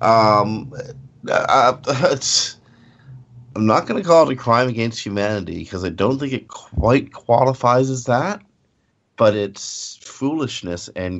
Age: 50-69